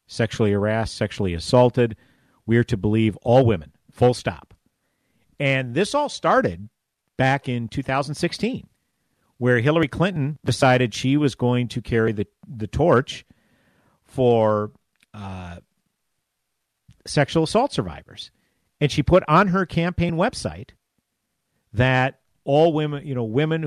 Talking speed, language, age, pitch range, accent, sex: 125 wpm, English, 50-69, 105-140 Hz, American, male